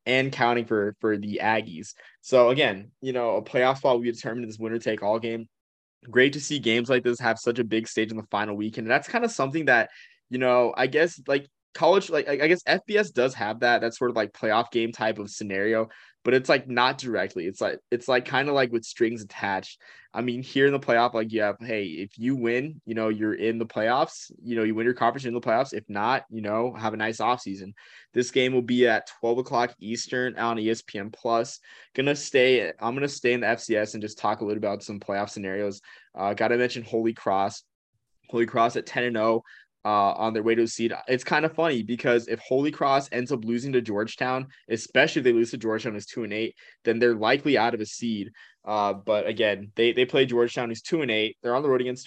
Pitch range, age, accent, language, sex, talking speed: 110-125 Hz, 20-39, American, English, male, 240 wpm